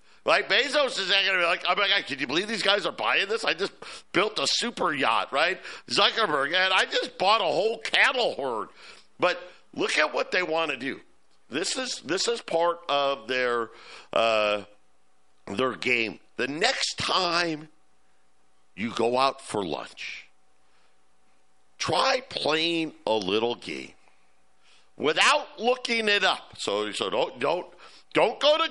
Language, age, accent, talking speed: English, 50-69, American, 155 wpm